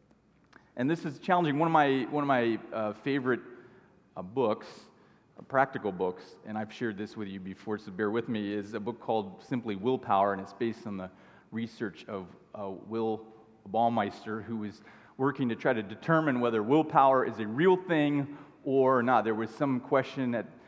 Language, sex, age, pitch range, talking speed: English, male, 30-49, 115-140 Hz, 185 wpm